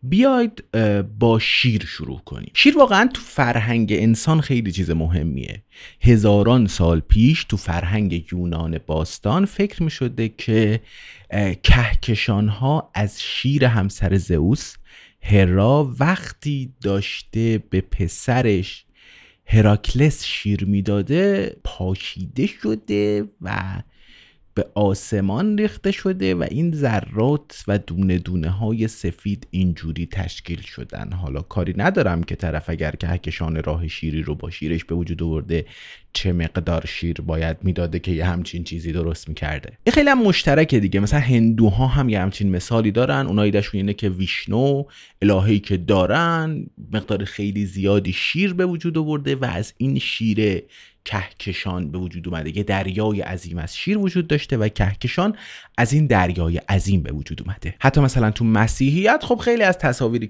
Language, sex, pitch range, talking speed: Persian, male, 90-125 Hz, 140 wpm